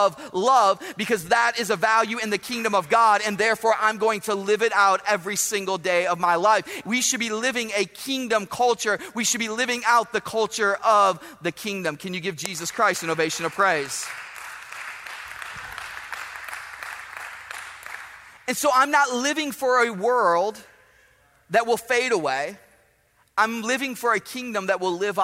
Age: 30-49